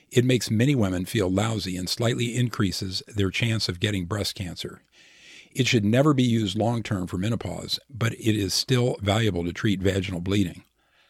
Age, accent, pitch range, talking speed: 50-69, American, 95-115 Hz, 175 wpm